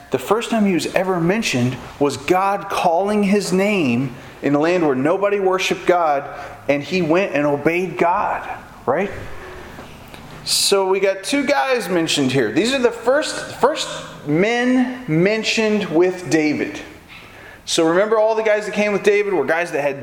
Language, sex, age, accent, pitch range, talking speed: English, male, 30-49, American, 140-205 Hz, 165 wpm